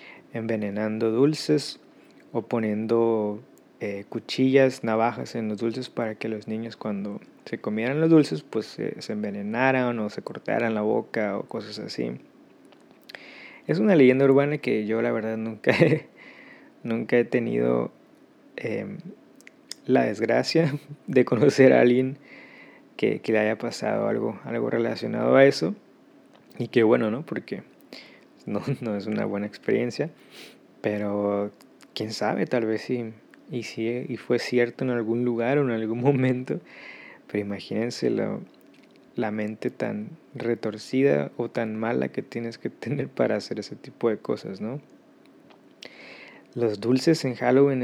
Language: Spanish